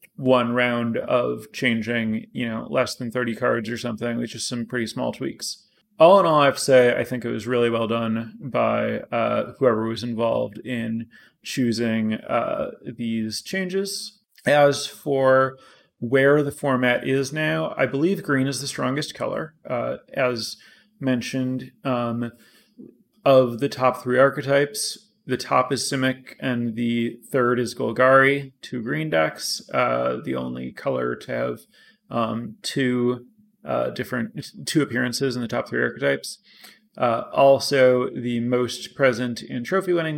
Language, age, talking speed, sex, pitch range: English, 30-49, 150 wpm, male, 120-140 Hz